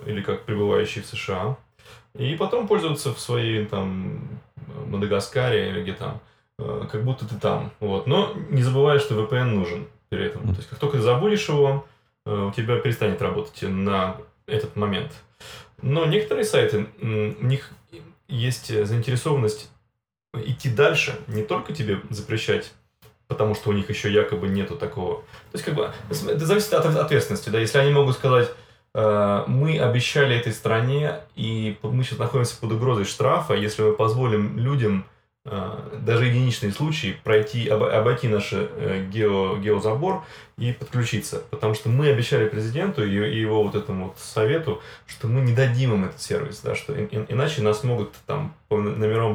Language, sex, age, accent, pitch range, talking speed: Russian, male, 20-39, native, 105-140 Hz, 155 wpm